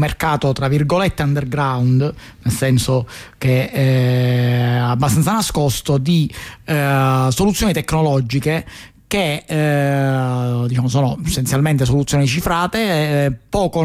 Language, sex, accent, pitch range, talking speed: Italian, male, native, 130-155 Hz, 100 wpm